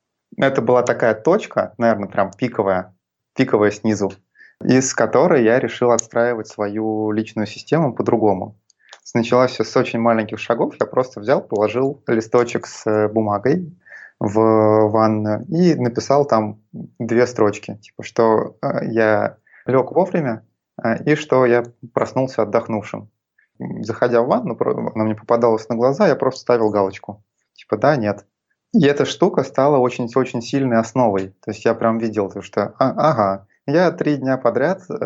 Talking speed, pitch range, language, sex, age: 140 wpm, 105-125 Hz, Russian, male, 20-39